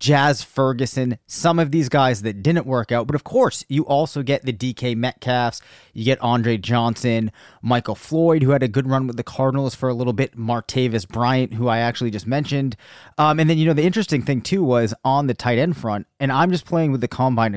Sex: male